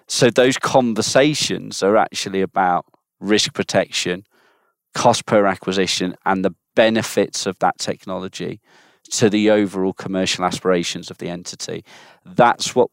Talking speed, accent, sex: 125 wpm, British, male